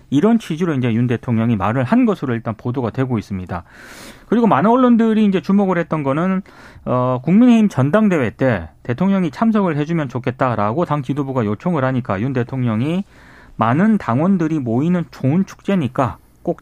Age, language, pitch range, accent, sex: 30-49, Korean, 125-195 Hz, native, male